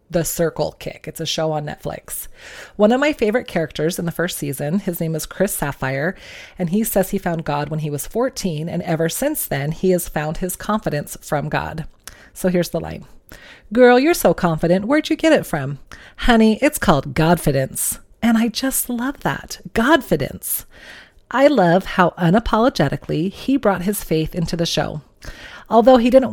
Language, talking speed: English, 180 wpm